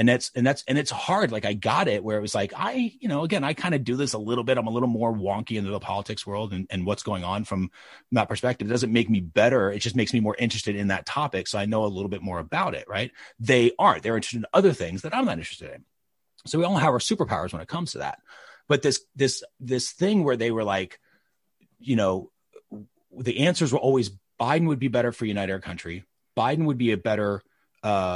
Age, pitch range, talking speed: 30-49, 100-130 Hz, 255 wpm